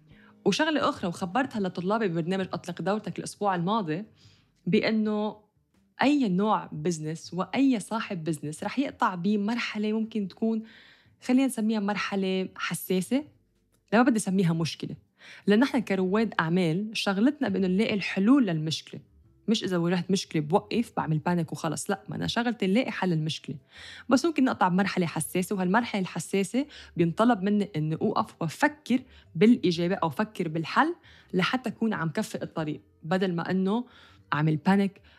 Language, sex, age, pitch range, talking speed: English, female, 20-39, 170-220 Hz, 140 wpm